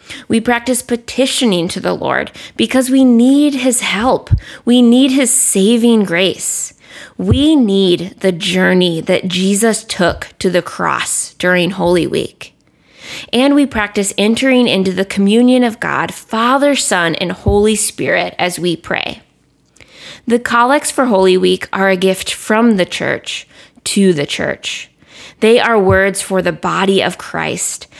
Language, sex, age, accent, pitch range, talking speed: English, female, 20-39, American, 185-235 Hz, 145 wpm